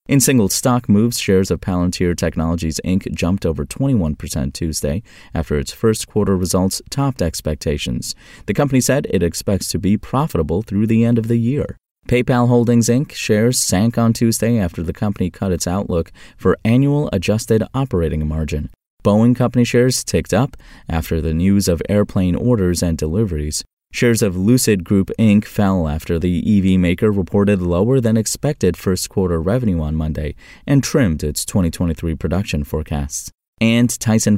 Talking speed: 155 wpm